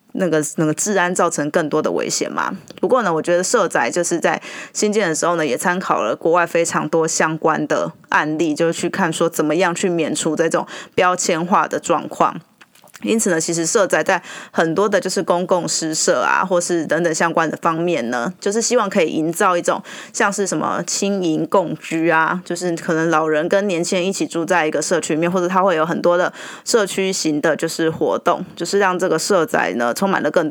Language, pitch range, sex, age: Chinese, 165-195 Hz, female, 20-39